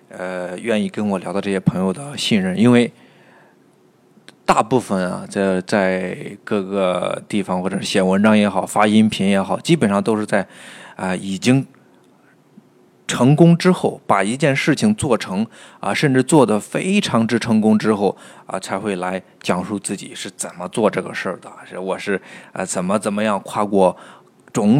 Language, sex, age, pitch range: Chinese, male, 20-39, 95-125 Hz